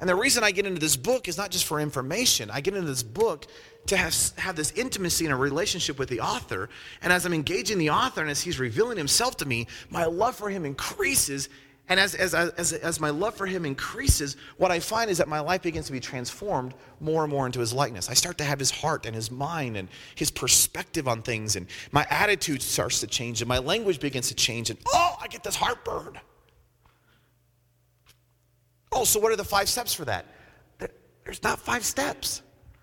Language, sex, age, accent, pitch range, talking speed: English, male, 30-49, American, 130-185 Hz, 220 wpm